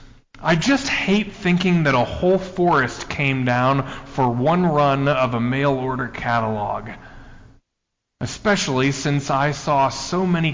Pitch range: 130-190 Hz